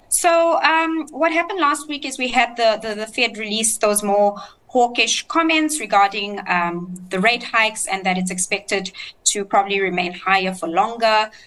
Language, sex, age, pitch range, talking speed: English, female, 20-39, 185-225 Hz, 175 wpm